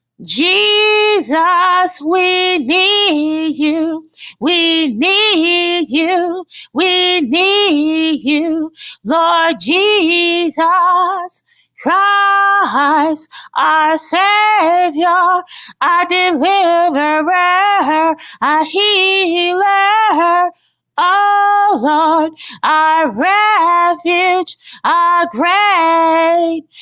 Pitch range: 320-385 Hz